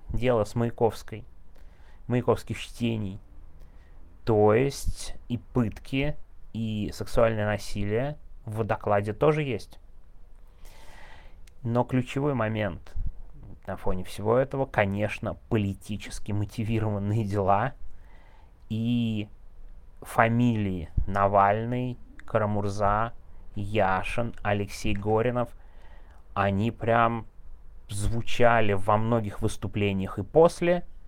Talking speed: 80 wpm